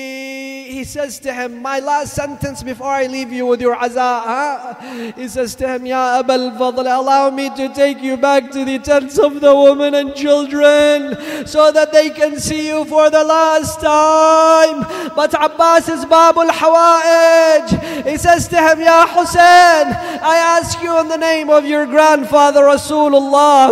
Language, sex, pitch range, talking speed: English, male, 260-315 Hz, 165 wpm